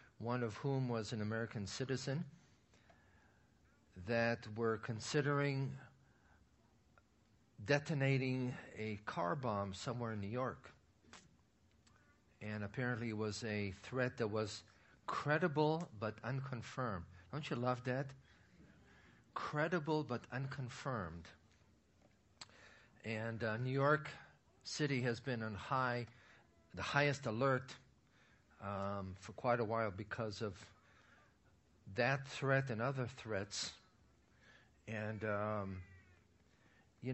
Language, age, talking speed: English, 50-69, 100 wpm